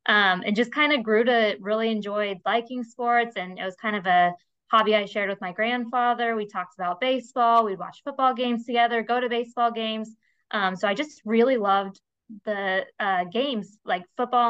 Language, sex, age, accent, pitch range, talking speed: English, female, 20-39, American, 195-230 Hz, 195 wpm